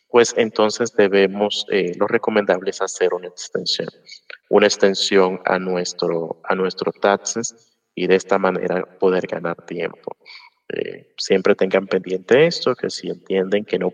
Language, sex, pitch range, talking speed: Spanish, male, 95-115 Hz, 145 wpm